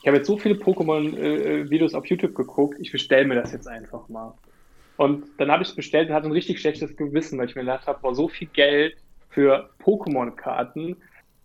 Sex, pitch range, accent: male, 135-160 Hz, German